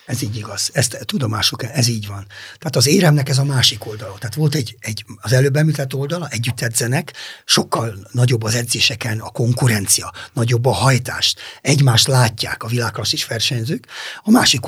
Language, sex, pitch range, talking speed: Hungarian, male, 110-135 Hz, 160 wpm